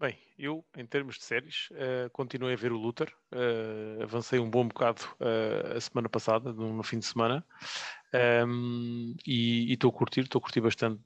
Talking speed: 185 wpm